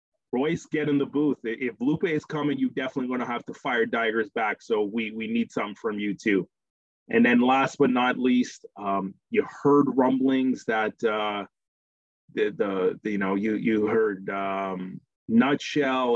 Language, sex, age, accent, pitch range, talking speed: English, male, 30-49, American, 100-135 Hz, 180 wpm